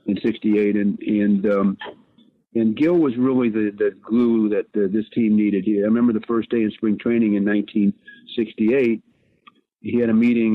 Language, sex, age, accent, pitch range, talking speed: English, male, 50-69, American, 105-115 Hz, 180 wpm